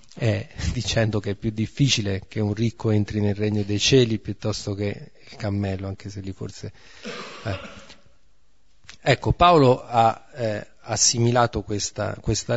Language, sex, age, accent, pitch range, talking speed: Italian, male, 40-59, native, 105-130 Hz, 140 wpm